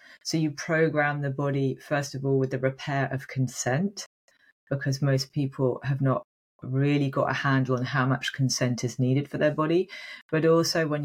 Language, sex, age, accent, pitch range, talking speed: English, female, 30-49, British, 130-155 Hz, 185 wpm